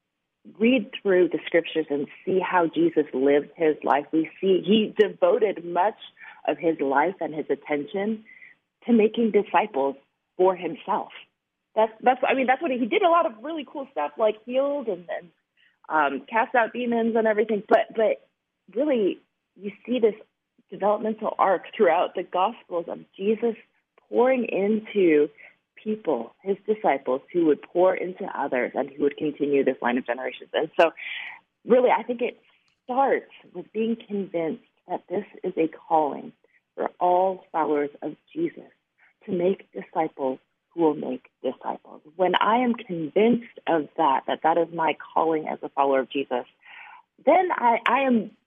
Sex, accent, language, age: female, American, English, 30-49